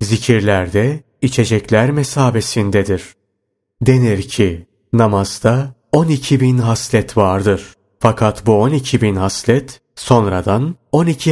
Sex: male